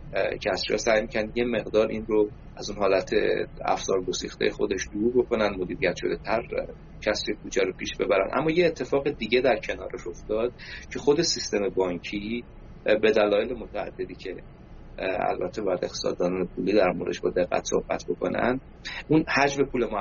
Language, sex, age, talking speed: Persian, male, 30-49, 160 wpm